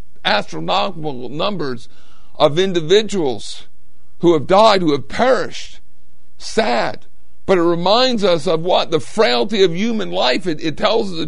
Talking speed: 140 wpm